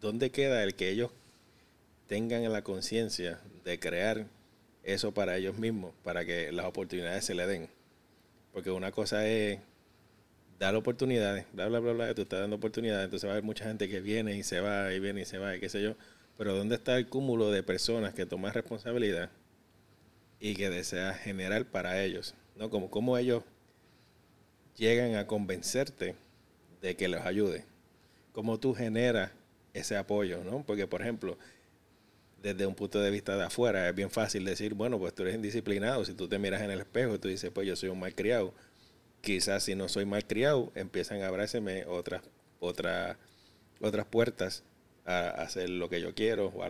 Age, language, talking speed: 30-49, English, 180 wpm